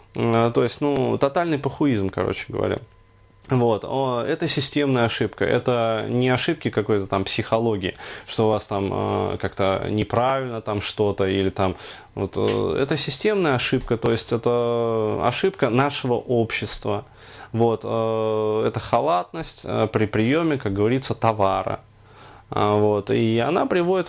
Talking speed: 120 wpm